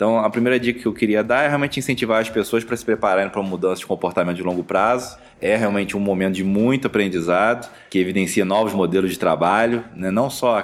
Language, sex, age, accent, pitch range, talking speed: Portuguese, male, 20-39, Brazilian, 95-110 Hz, 230 wpm